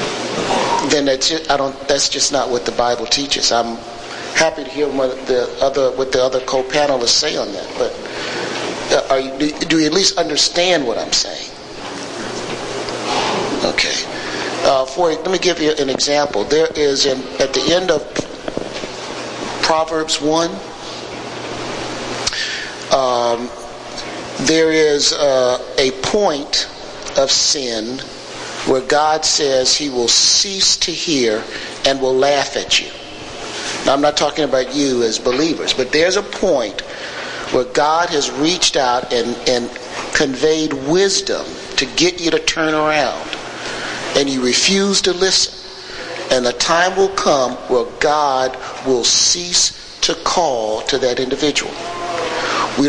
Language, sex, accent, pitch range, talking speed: English, male, American, 130-160 Hz, 140 wpm